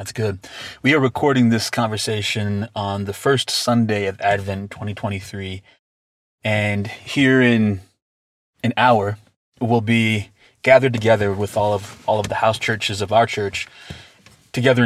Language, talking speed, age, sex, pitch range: English, 145 wpm, 20-39, male, 100-120 Hz